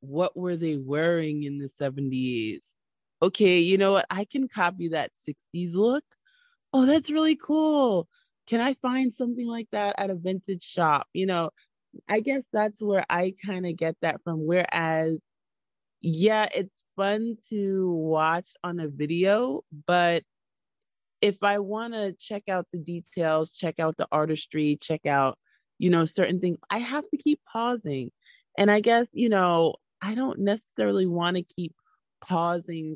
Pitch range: 155-205 Hz